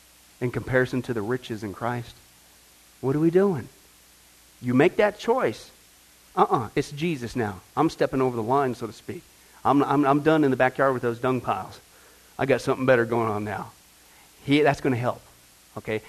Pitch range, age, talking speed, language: 105-175 Hz, 40-59, 185 wpm, English